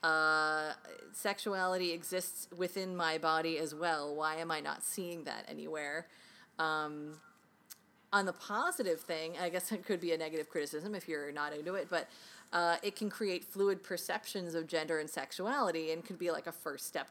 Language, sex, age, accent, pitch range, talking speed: English, female, 30-49, American, 160-210 Hz, 180 wpm